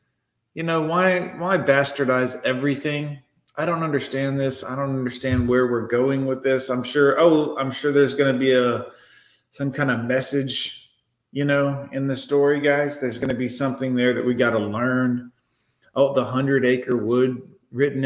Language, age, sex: English, 30-49, male